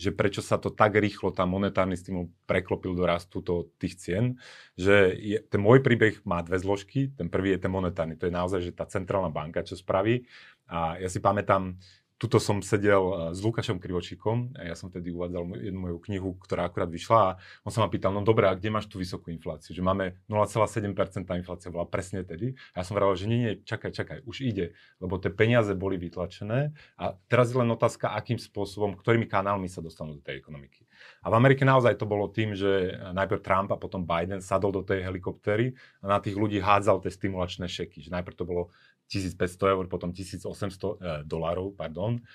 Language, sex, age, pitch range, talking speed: Slovak, male, 30-49, 90-110 Hz, 195 wpm